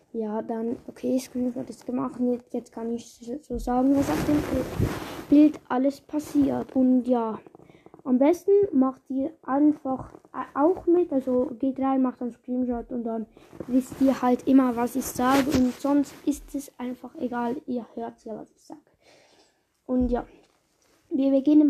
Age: 20-39